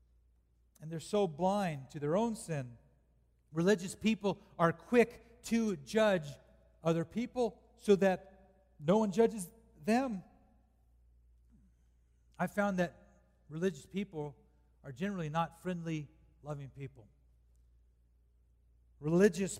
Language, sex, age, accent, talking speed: English, male, 40-59, American, 105 wpm